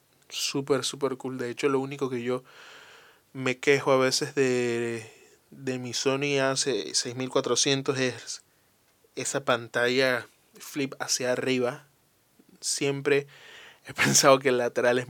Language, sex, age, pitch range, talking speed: Spanish, male, 20-39, 130-155 Hz, 125 wpm